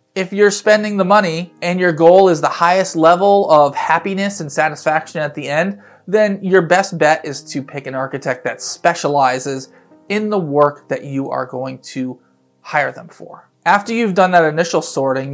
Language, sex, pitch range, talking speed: English, male, 140-175 Hz, 185 wpm